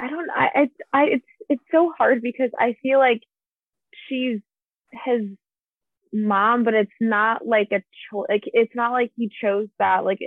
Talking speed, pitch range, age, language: 165 wpm, 190-250 Hz, 20-39, English